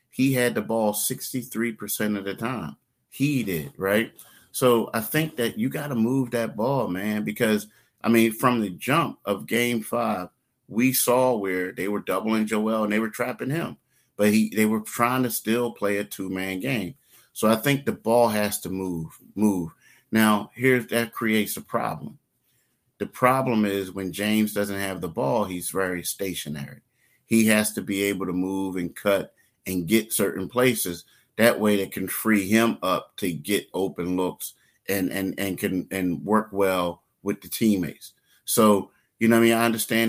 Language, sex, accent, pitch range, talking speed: English, male, American, 95-115 Hz, 185 wpm